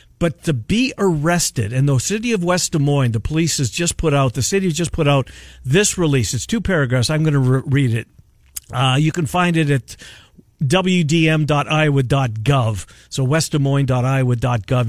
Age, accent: 50-69, American